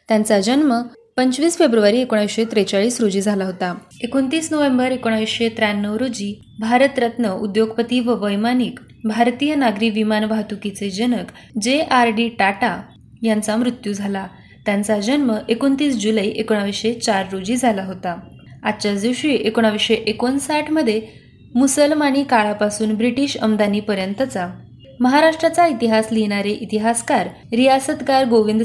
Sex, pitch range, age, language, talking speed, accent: female, 210-250 Hz, 20-39, Marathi, 105 wpm, native